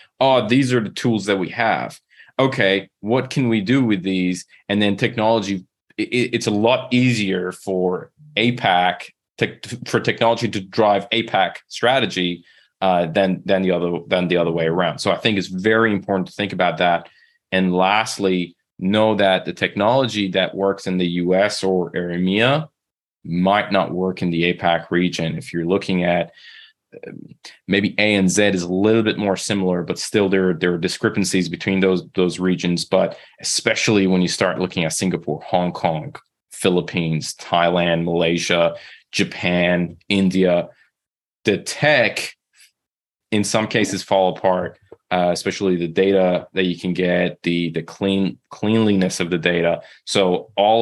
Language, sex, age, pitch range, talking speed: English, male, 20-39, 85-105 Hz, 160 wpm